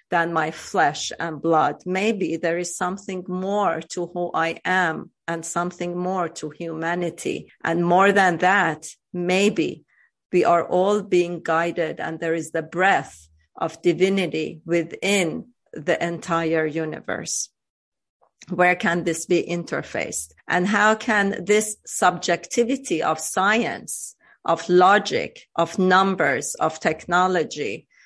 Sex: female